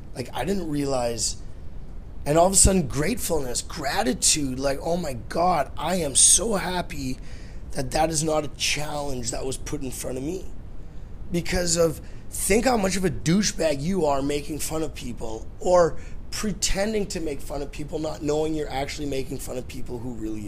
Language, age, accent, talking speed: English, 30-49, American, 185 wpm